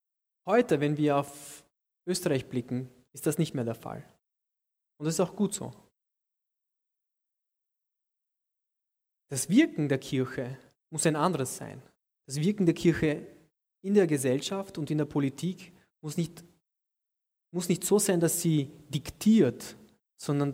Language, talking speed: German, 135 wpm